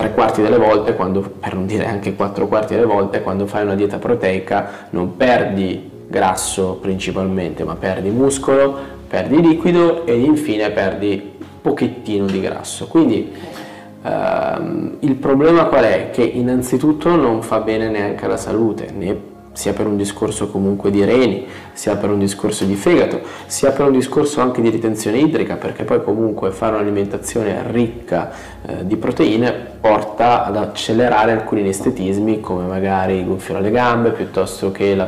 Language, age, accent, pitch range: Italian, 20-39, native, 95-120 Hz